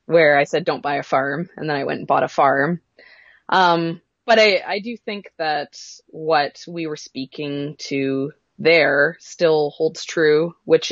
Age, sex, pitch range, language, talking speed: 20-39, female, 145-180 Hz, English, 175 wpm